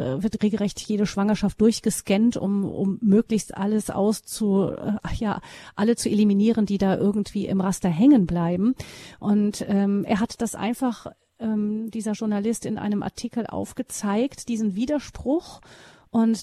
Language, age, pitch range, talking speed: German, 40-59, 200-230 Hz, 140 wpm